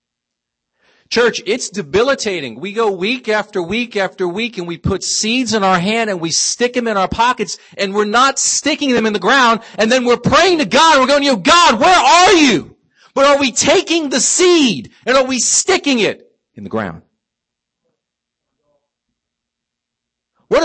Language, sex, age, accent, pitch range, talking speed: English, male, 50-69, American, 195-255 Hz, 175 wpm